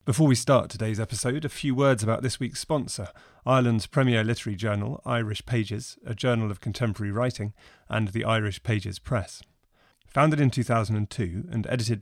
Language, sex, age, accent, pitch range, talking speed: English, male, 30-49, British, 105-125 Hz, 165 wpm